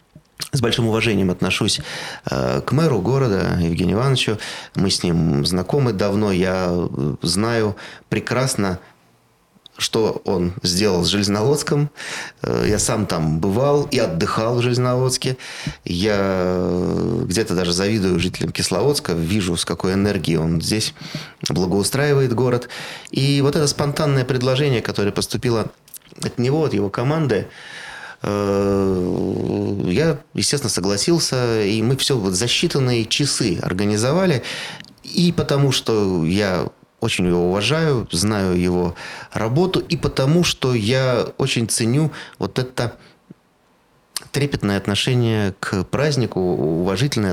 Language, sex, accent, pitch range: Russian, male, native, 95-135 Hz